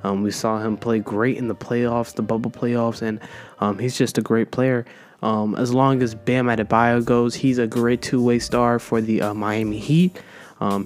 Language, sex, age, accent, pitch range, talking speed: English, male, 20-39, American, 110-130 Hz, 205 wpm